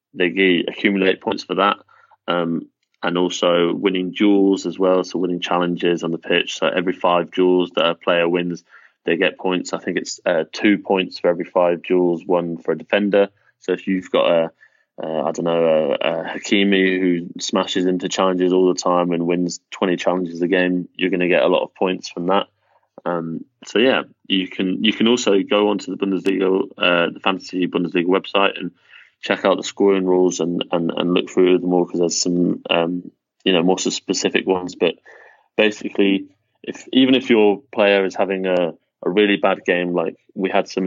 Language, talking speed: English, 200 wpm